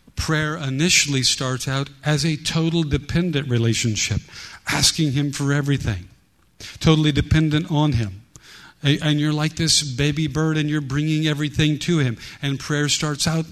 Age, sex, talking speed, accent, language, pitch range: 50-69, male, 145 wpm, American, English, 125-150 Hz